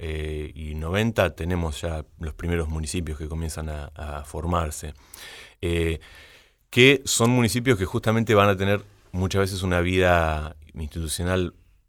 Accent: Argentinian